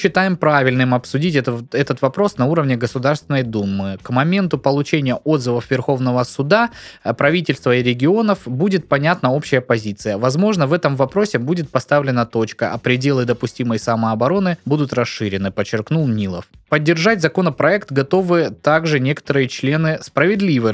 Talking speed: 130 wpm